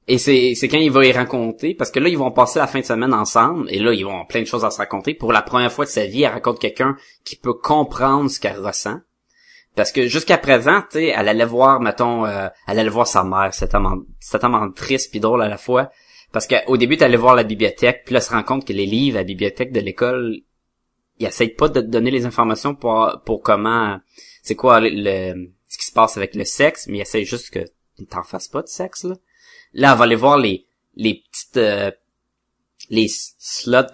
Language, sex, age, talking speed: French, male, 20-39, 240 wpm